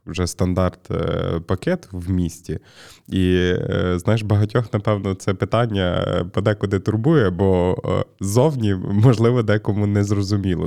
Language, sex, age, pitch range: Ukrainian, male, 20-39, 90-110 Hz